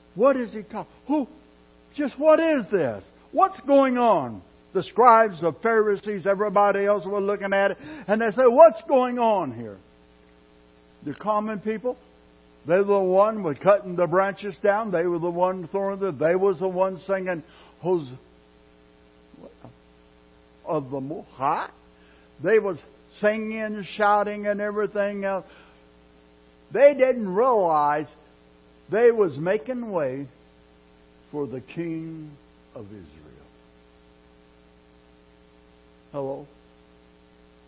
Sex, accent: male, American